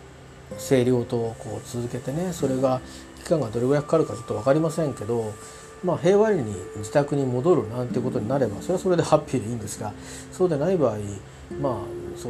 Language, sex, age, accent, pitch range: Japanese, male, 40-59, native, 105-150 Hz